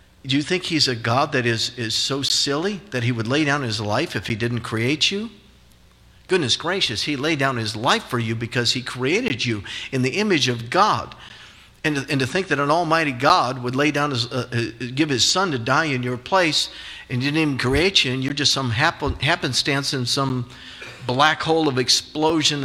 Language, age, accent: English, 50-69, American